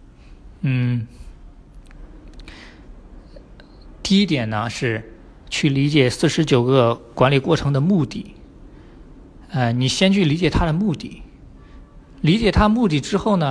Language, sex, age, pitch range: Chinese, male, 50-69, 125-165 Hz